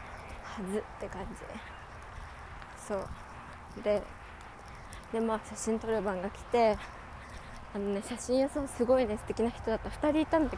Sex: female